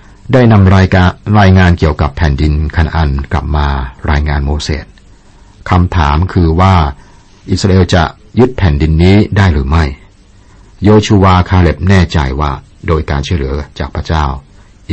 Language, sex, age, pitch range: Thai, male, 60-79, 75-95 Hz